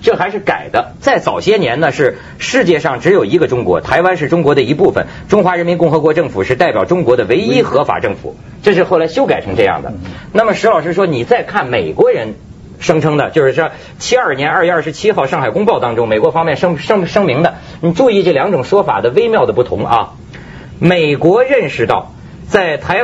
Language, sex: Chinese, male